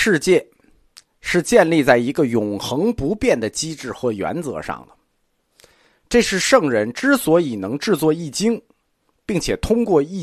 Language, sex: Chinese, male